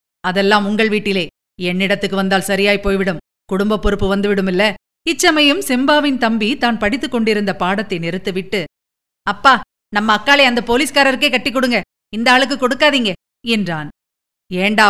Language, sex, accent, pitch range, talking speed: Tamil, female, native, 195-250 Hz, 120 wpm